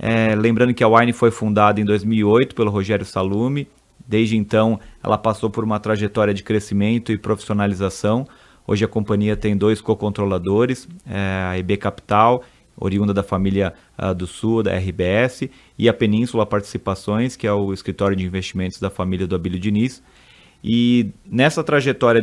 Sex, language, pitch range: male, Portuguese, 105-125 Hz